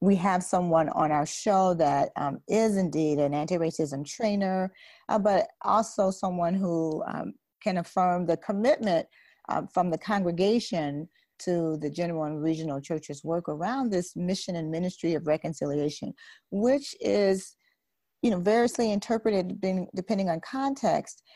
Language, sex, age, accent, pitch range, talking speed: English, female, 40-59, American, 160-210 Hz, 145 wpm